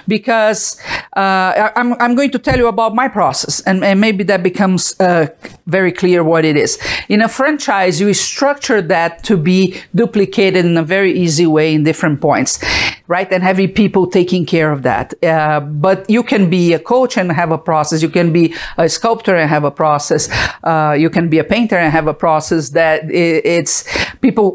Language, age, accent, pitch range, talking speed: English, 50-69, Italian, 165-215 Hz, 195 wpm